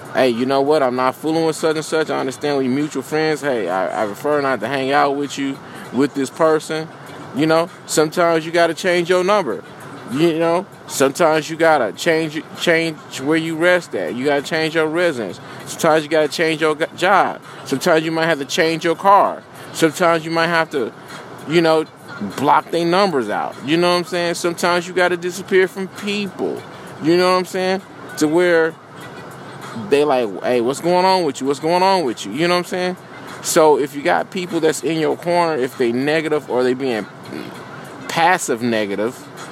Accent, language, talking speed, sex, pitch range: American, English, 205 wpm, male, 140-175 Hz